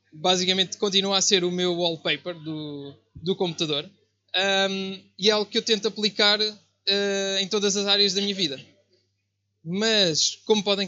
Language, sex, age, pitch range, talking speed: Portuguese, male, 20-39, 160-205 Hz, 160 wpm